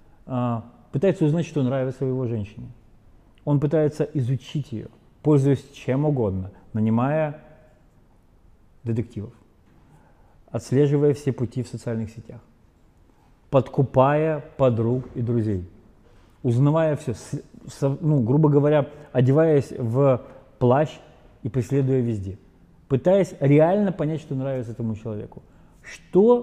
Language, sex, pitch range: Russian, male, 110-150 Hz